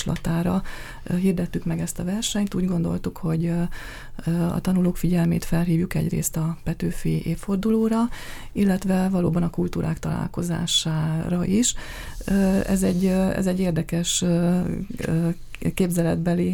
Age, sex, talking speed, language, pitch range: 30-49, female, 105 wpm, Hungarian, 165-185 Hz